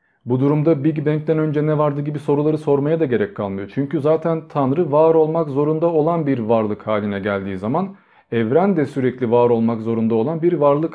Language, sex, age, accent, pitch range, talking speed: Turkish, male, 40-59, native, 120-160 Hz, 185 wpm